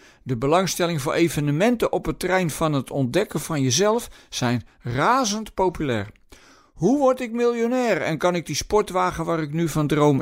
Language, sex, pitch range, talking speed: Dutch, male, 135-190 Hz, 170 wpm